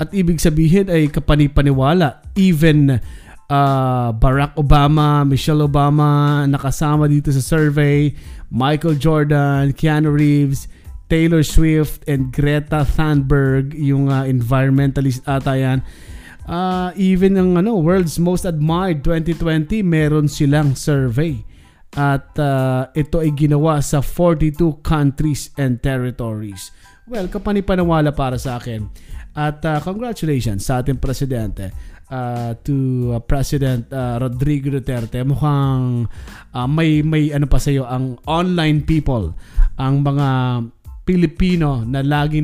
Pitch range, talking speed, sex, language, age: 130-160 Hz, 115 wpm, male, Filipino, 20-39